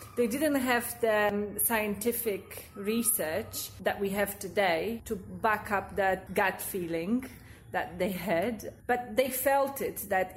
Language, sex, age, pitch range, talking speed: English, female, 30-49, 205-235 Hz, 140 wpm